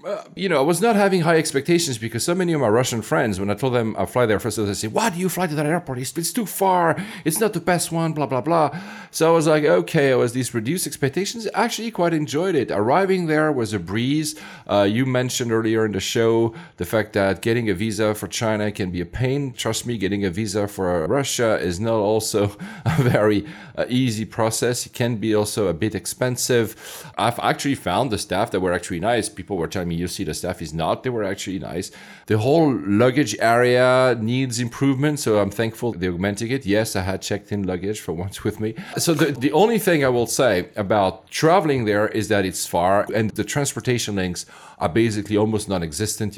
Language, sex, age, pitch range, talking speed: English, male, 40-59, 105-150 Hz, 225 wpm